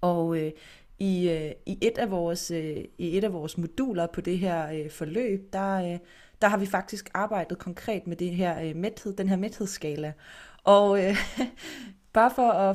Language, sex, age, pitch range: Danish, female, 20-39, 170-210 Hz